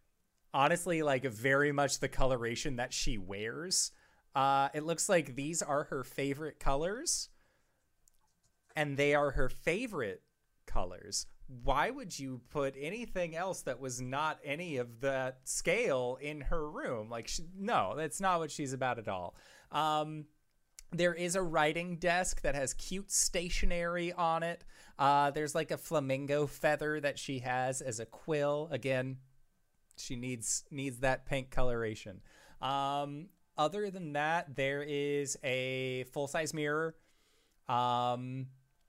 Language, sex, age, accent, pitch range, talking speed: English, male, 30-49, American, 130-165 Hz, 140 wpm